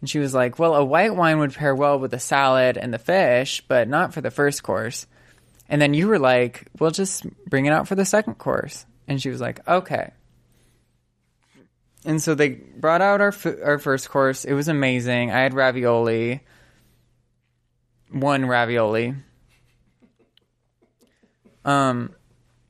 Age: 20-39